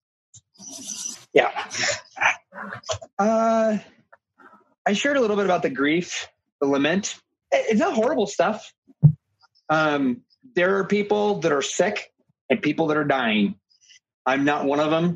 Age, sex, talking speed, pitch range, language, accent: 30-49, male, 130 wpm, 125-175 Hz, English, American